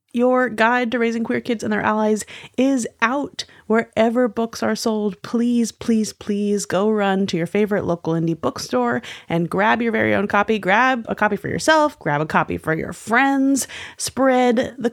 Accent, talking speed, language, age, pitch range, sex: American, 180 wpm, English, 30-49, 170-230 Hz, female